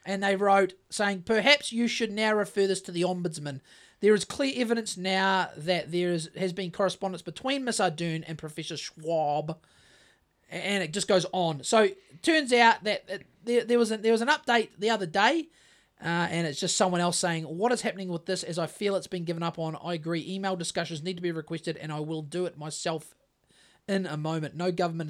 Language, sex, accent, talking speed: English, male, Australian, 220 wpm